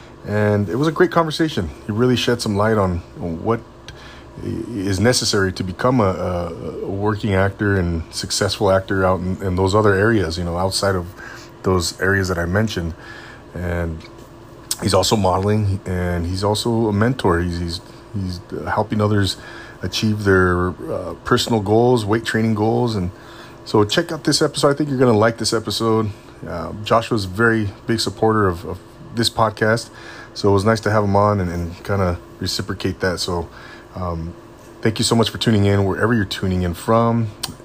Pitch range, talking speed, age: 95-115 Hz, 180 wpm, 30-49